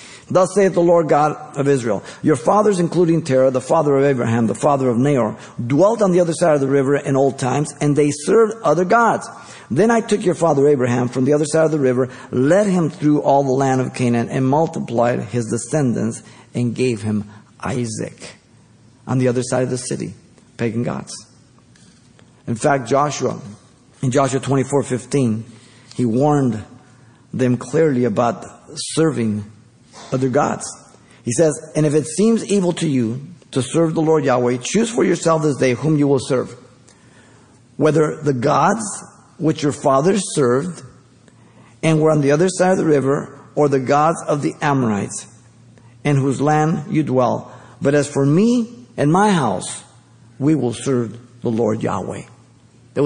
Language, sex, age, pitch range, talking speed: English, male, 50-69, 125-155 Hz, 175 wpm